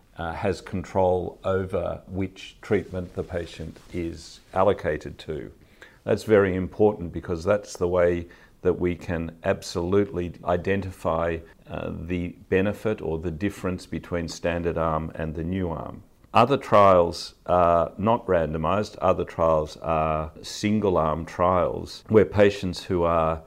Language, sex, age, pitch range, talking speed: English, male, 50-69, 85-95 Hz, 130 wpm